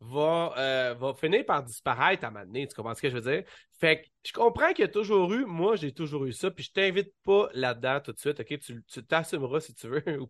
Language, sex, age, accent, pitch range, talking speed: French, male, 30-49, Canadian, 140-185 Hz, 275 wpm